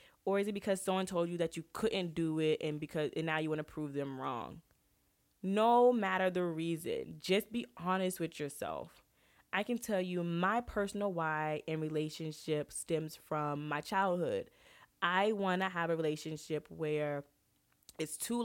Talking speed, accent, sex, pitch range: 170 wpm, American, female, 155-185 Hz